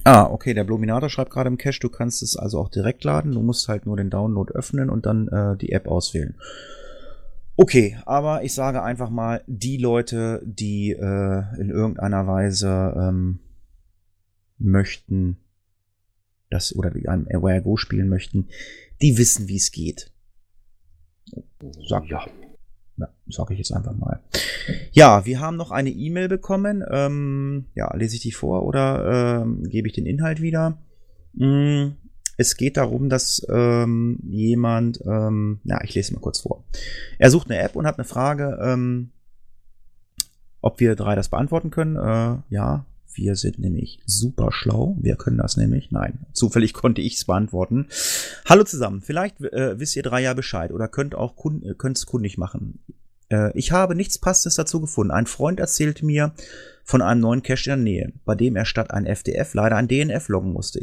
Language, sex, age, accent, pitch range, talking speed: German, male, 30-49, German, 100-135 Hz, 175 wpm